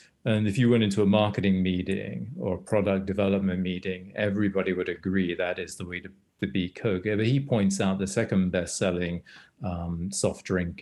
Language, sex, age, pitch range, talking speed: English, male, 40-59, 95-105 Hz, 190 wpm